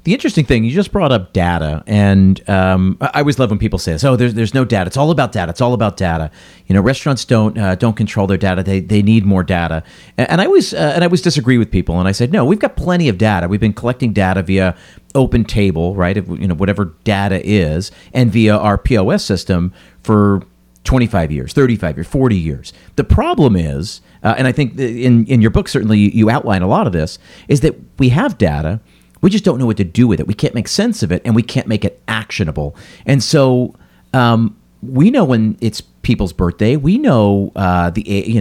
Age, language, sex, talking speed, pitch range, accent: 40-59, English, male, 230 wpm, 95-125 Hz, American